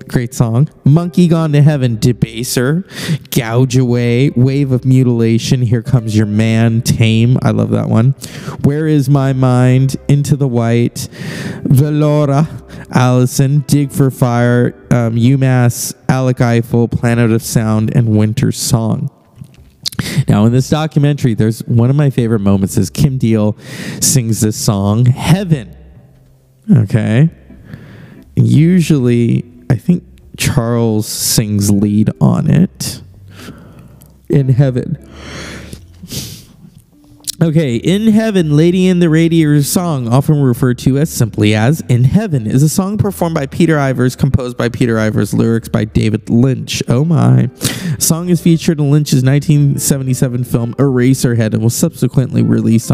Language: English